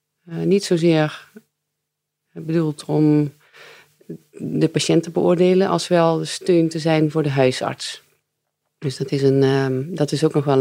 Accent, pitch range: Dutch, 140-165 Hz